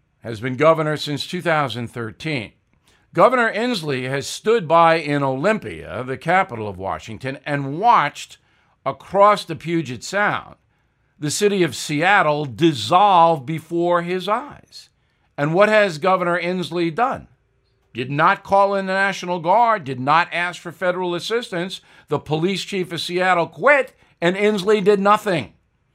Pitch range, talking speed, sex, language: 140-195 Hz, 135 wpm, male, English